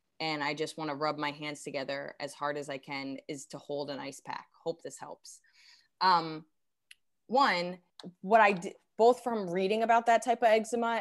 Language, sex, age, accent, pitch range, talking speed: English, female, 20-39, American, 150-190 Hz, 195 wpm